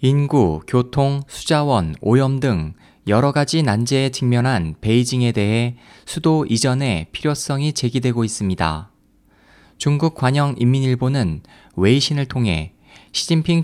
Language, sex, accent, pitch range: Korean, male, native, 110-140 Hz